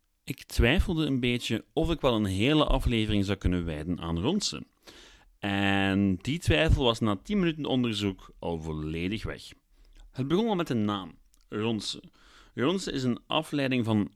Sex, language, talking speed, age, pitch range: male, Dutch, 160 wpm, 40-59, 95-135 Hz